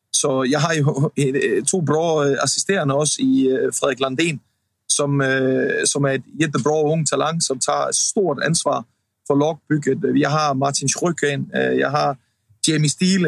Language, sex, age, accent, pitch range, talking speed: Swedish, male, 30-49, Danish, 130-165 Hz, 160 wpm